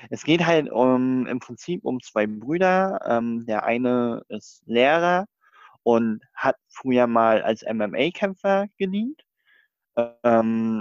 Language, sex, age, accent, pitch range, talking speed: German, male, 20-39, German, 115-150 Hz, 120 wpm